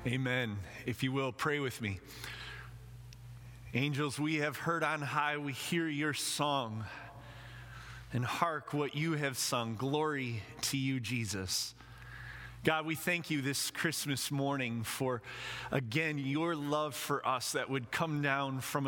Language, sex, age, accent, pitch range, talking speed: English, male, 30-49, American, 120-150 Hz, 145 wpm